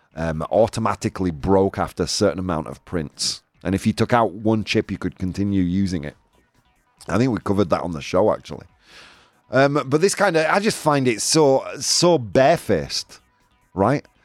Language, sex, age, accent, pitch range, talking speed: English, male, 30-49, British, 105-155 Hz, 180 wpm